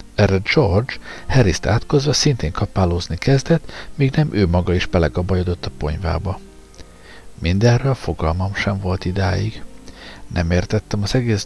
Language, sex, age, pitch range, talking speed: Hungarian, male, 60-79, 95-120 Hz, 125 wpm